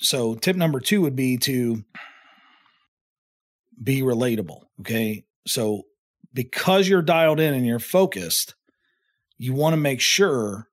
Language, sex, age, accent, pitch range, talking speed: English, male, 40-59, American, 110-140 Hz, 130 wpm